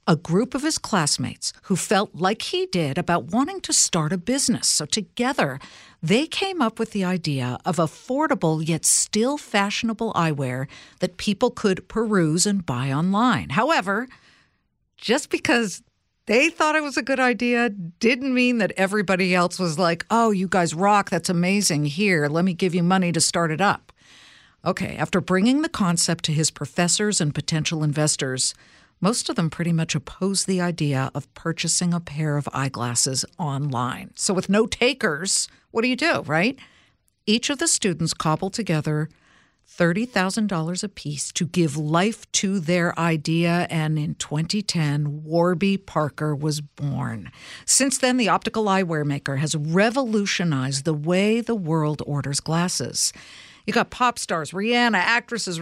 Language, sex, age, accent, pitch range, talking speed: English, female, 60-79, American, 155-215 Hz, 160 wpm